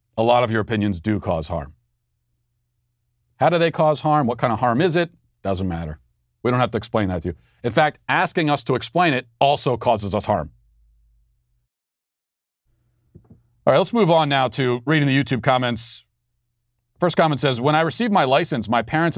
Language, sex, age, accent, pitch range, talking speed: English, male, 40-59, American, 110-135 Hz, 190 wpm